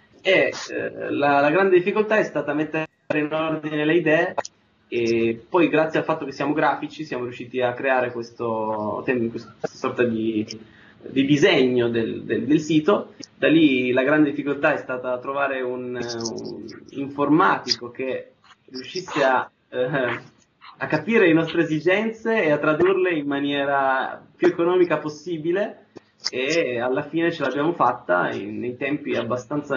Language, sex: Italian, male